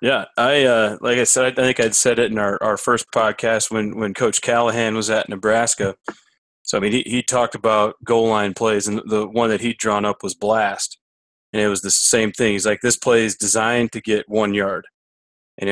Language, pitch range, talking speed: English, 100-115 Hz, 225 wpm